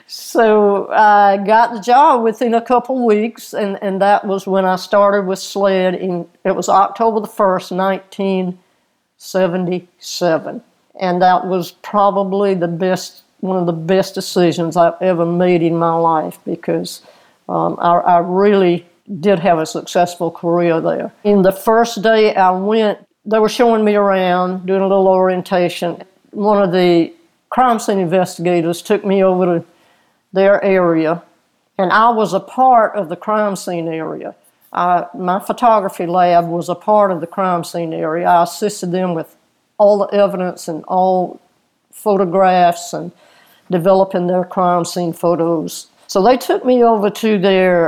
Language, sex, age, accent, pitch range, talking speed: English, female, 60-79, American, 175-210 Hz, 155 wpm